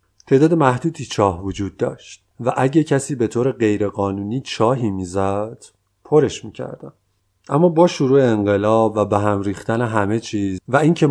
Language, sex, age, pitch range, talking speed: Persian, male, 30-49, 105-125 Hz, 150 wpm